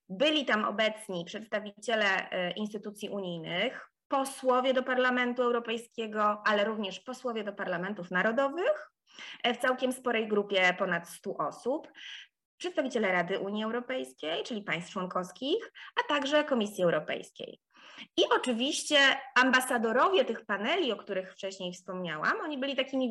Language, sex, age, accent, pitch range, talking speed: Polish, female, 20-39, native, 190-255 Hz, 120 wpm